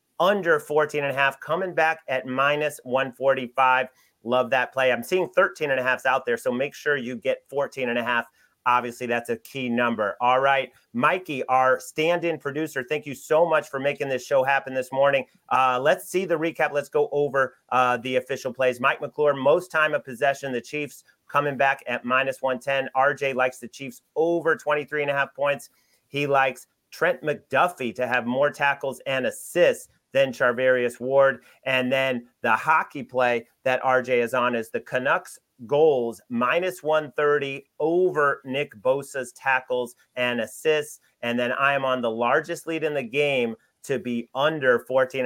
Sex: male